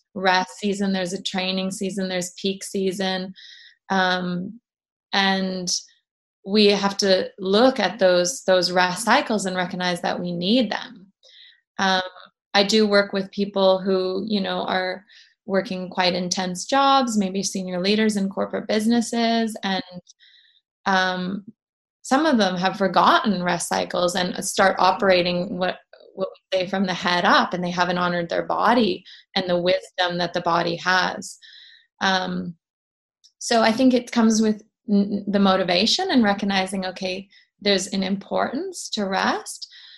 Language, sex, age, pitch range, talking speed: English, female, 20-39, 185-220 Hz, 145 wpm